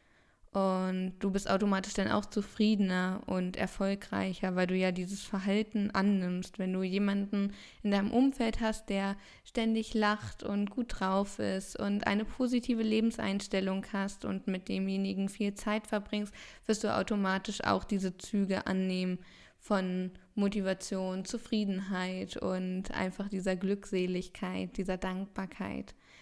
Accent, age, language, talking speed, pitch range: German, 20-39, German, 130 wpm, 190-205 Hz